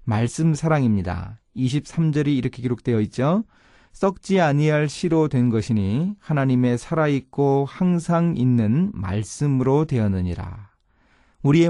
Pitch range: 105-150 Hz